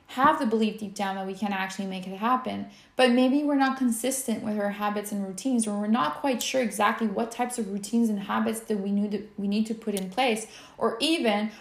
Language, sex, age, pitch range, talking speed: English, female, 20-39, 200-245 Hz, 225 wpm